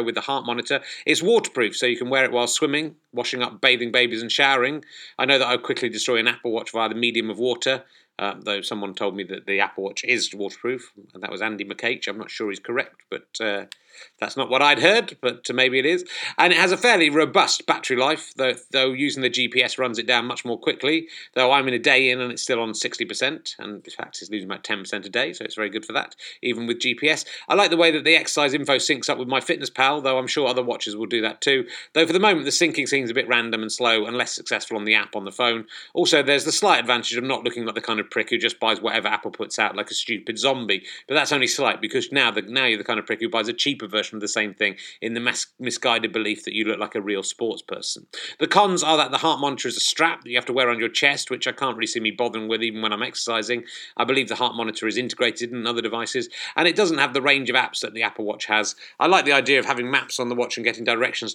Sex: male